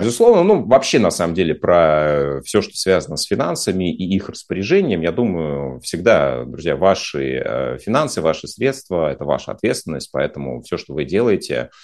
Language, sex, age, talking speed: Russian, male, 30-49, 155 wpm